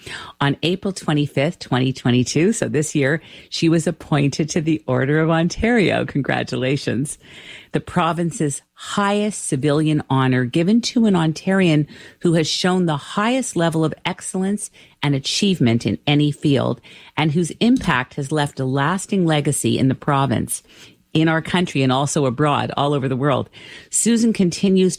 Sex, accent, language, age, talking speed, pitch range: female, American, English, 50-69, 145 wpm, 130-165 Hz